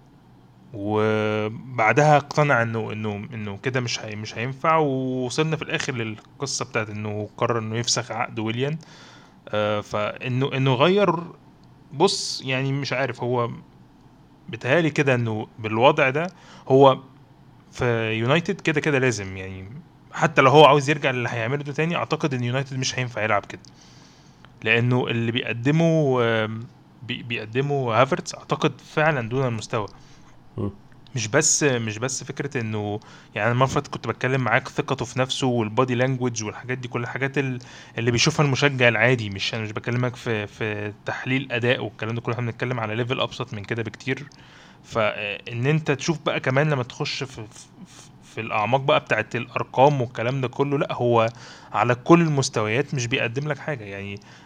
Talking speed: 150 wpm